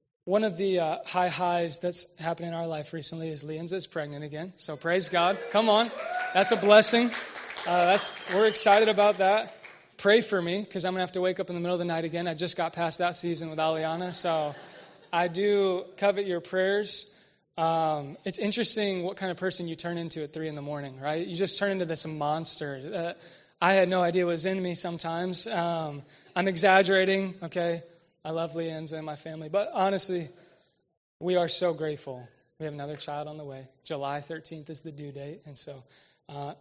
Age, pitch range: 20-39, 160-200 Hz